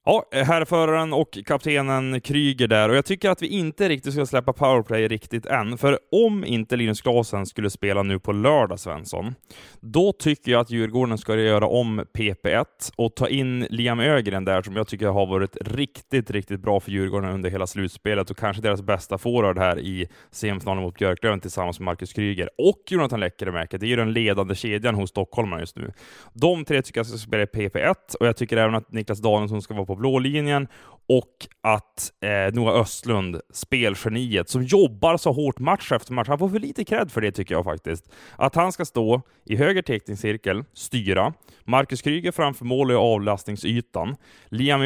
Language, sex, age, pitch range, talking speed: Swedish, male, 20-39, 100-135 Hz, 195 wpm